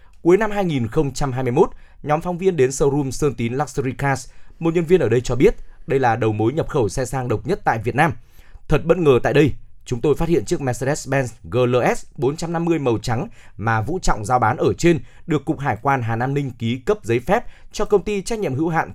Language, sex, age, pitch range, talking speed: Vietnamese, male, 20-39, 120-160 Hz, 230 wpm